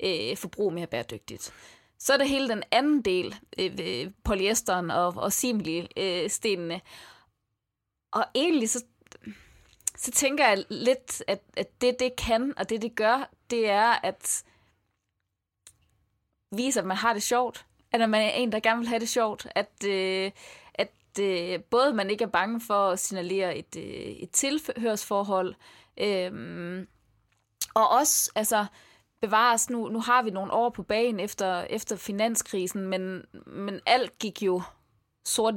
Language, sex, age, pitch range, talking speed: English, female, 20-39, 180-230 Hz, 155 wpm